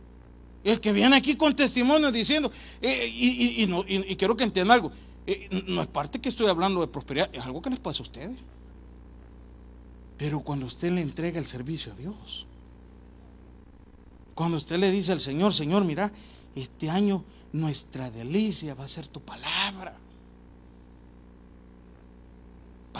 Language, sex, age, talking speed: Spanish, male, 40-59, 160 wpm